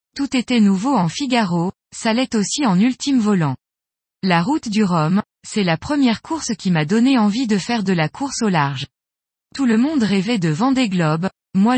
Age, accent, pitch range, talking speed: 20-39, French, 175-245 Hz, 195 wpm